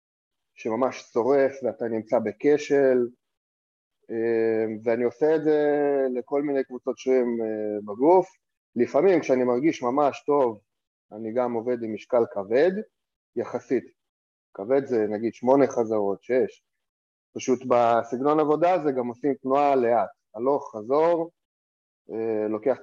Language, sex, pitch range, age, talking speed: Hebrew, male, 110-135 Hz, 30-49, 115 wpm